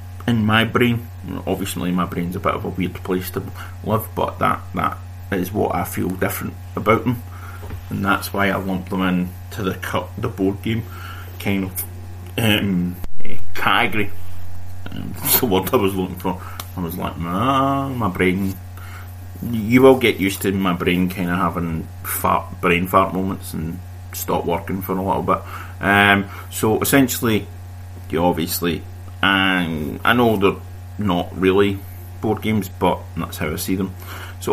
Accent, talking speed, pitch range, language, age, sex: British, 165 wpm, 90-95 Hz, English, 30-49, male